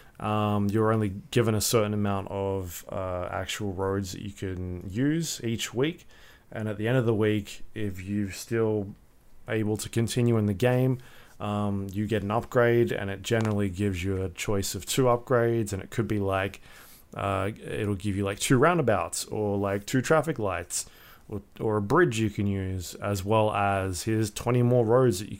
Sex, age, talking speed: male, 20-39, 190 wpm